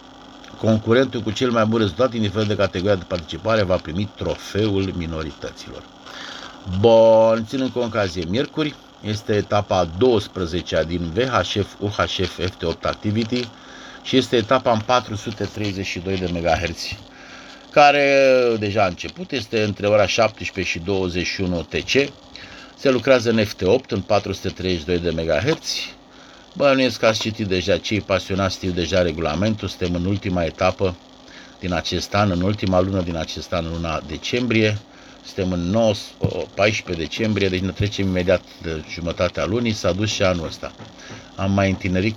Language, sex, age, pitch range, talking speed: Romanian, male, 50-69, 90-115 Hz, 140 wpm